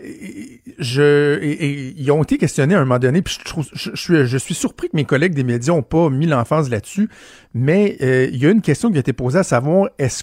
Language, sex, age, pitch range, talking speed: French, male, 50-69, 140-180 Hz, 265 wpm